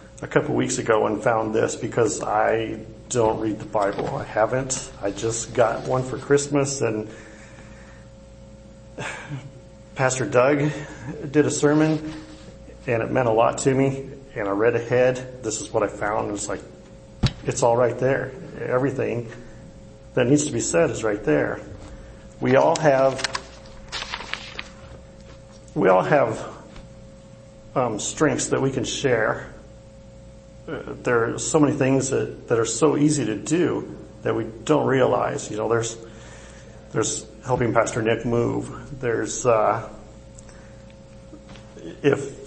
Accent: American